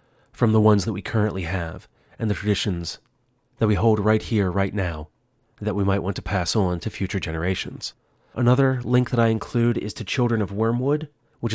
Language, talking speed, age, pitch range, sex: English, 195 wpm, 30-49, 95-115 Hz, male